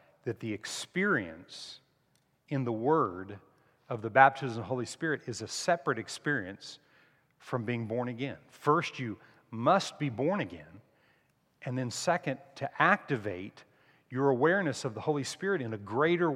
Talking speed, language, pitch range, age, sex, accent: 150 wpm, English, 110-145 Hz, 40-59, male, American